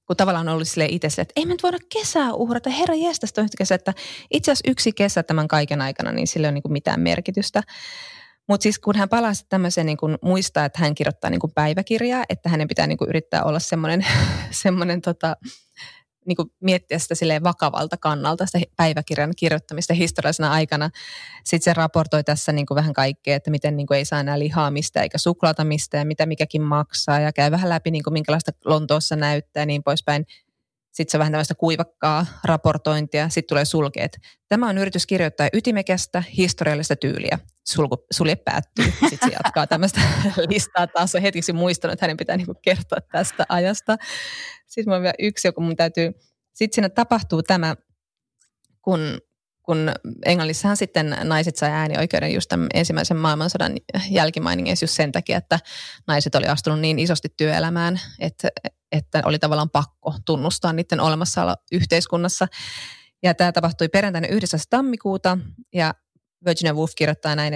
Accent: native